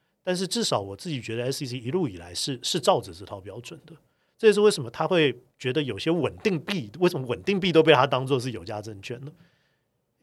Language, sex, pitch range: Chinese, male, 115-155 Hz